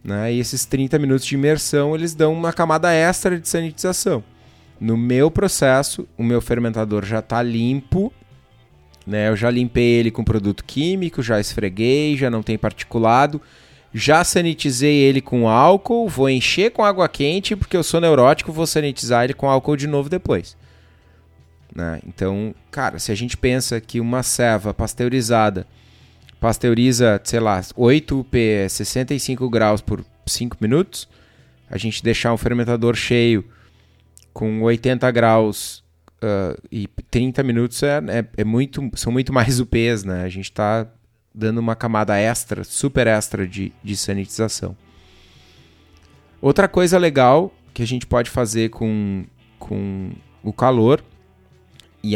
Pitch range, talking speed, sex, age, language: 105-135 Hz, 145 wpm, male, 20-39, Portuguese